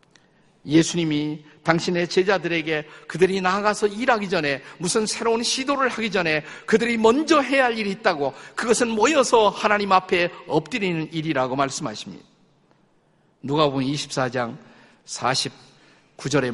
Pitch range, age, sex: 150-200 Hz, 50-69, male